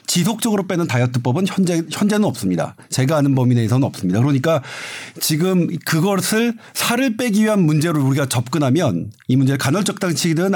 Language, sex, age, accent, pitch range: Korean, male, 50-69, native, 140-185 Hz